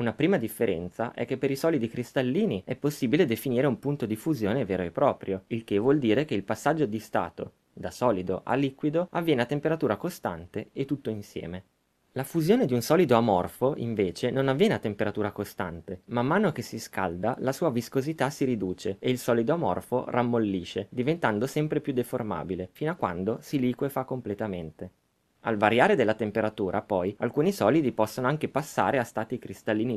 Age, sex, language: 20-39, male, Italian